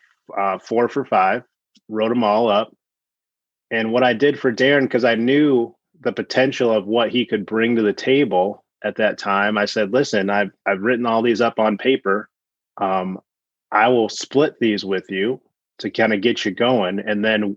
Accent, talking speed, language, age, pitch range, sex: American, 190 wpm, English, 30-49, 105-120 Hz, male